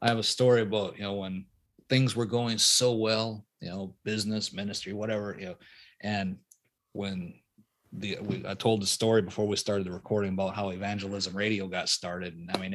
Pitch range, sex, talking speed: 100-130 Hz, male, 200 wpm